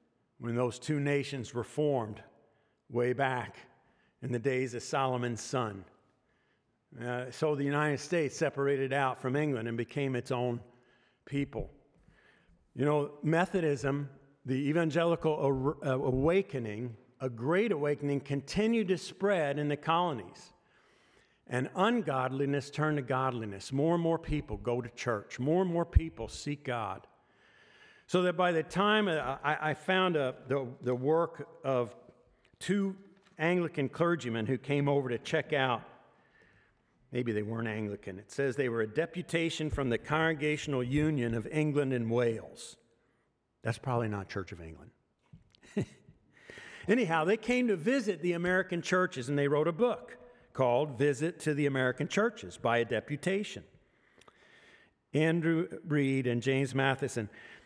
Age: 50-69